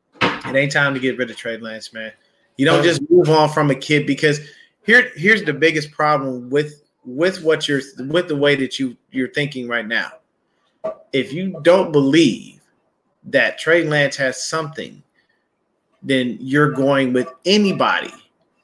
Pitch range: 135-160 Hz